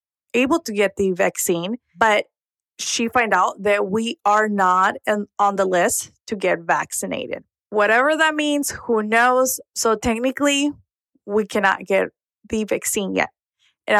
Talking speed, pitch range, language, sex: 145 wpm, 195-235 Hz, English, female